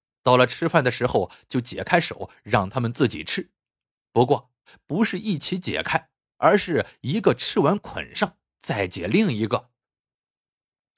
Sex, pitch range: male, 120-185 Hz